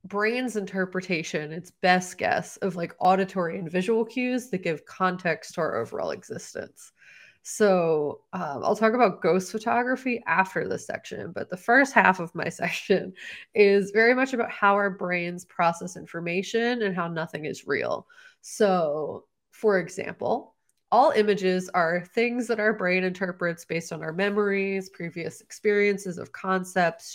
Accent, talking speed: American, 150 wpm